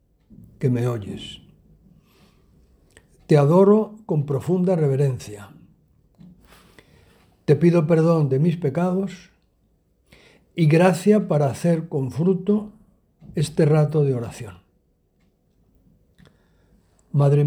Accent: Spanish